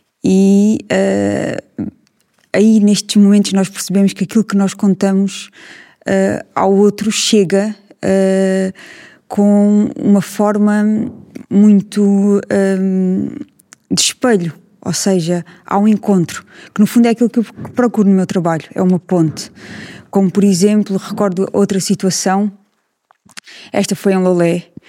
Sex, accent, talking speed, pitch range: female, Brazilian, 120 wpm, 185-210 Hz